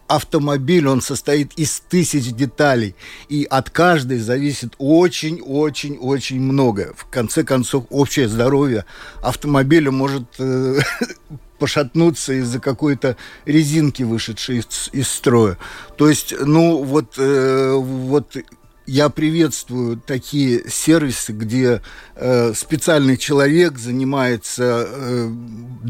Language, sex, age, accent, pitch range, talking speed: Russian, male, 50-69, native, 120-145 Hz, 100 wpm